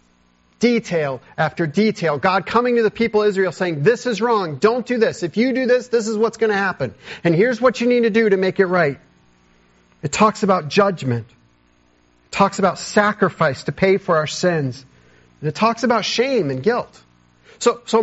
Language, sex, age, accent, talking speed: English, male, 40-59, American, 200 wpm